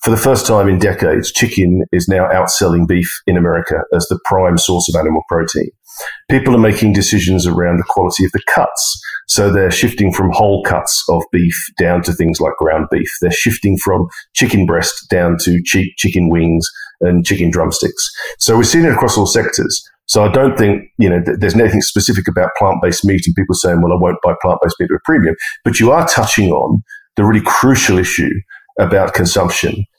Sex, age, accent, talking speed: male, 40-59, Australian, 200 wpm